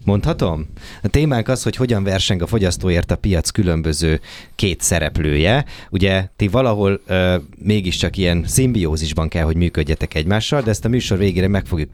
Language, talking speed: Hungarian, 155 wpm